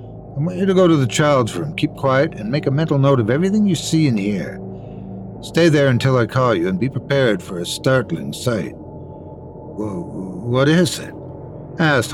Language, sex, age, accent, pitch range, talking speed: English, male, 60-79, American, 110-150 Hz, 195 wpm